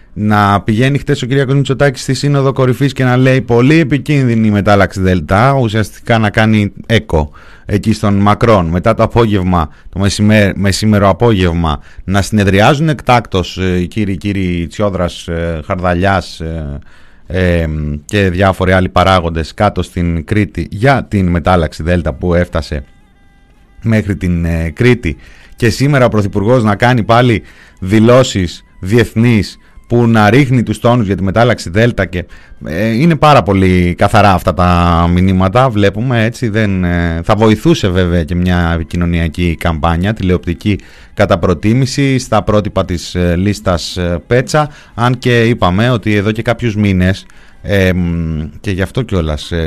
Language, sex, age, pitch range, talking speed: Greek, male, 30-49, 90-115 Hz, 140 wpm